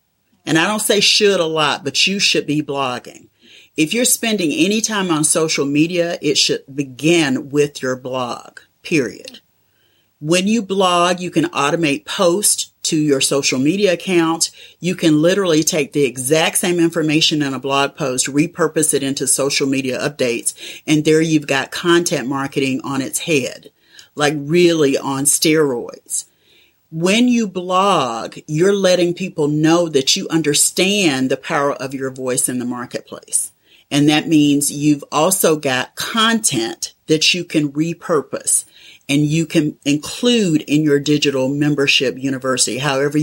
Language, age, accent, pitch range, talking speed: English, 40-59, American, 140-175 Hz, 150 wpm